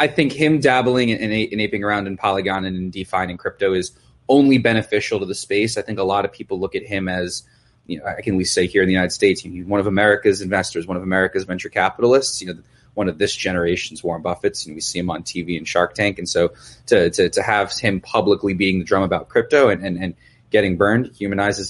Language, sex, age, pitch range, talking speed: English, male, 30-49, 95-120 Hz, 250 wpm